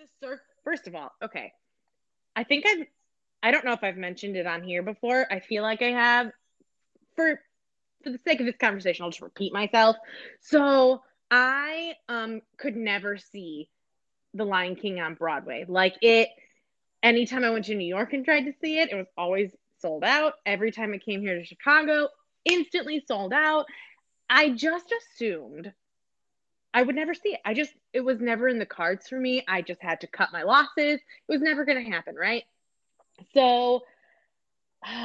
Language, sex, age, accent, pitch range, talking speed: English, female, 20-39, American, 200-275 Hz, 180 wpm